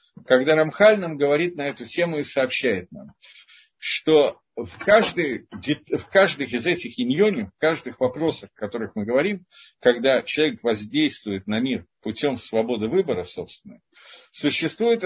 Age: 50-69